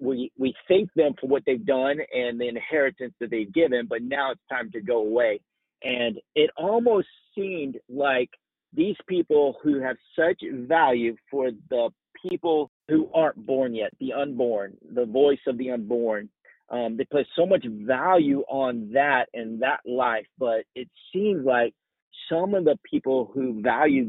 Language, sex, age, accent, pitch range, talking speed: English, male, 40-59, American, 120-165 Hz, 165 wpm